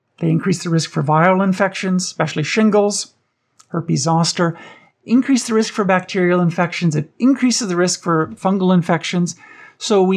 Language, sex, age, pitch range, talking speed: English, male, 50-69, 155-205 Hz, 155 wpm